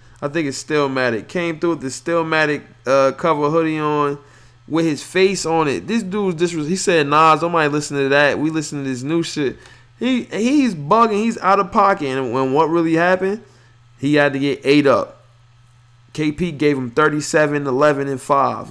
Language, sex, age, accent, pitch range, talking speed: English, male, 20-39, American, 120-165 Hz, 190 wpm